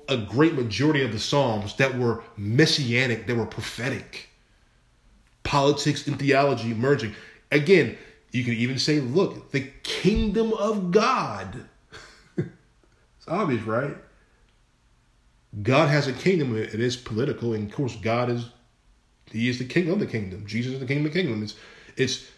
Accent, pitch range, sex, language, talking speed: American, 115-155 Hz, male, English, 155 wpm